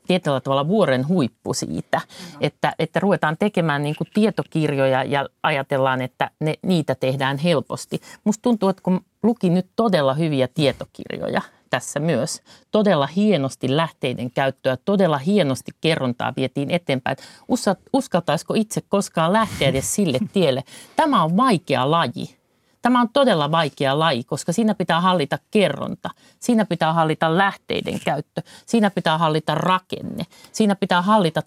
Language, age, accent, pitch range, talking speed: Finnish, 50-69, native, 140-200 Hz, 135 wpm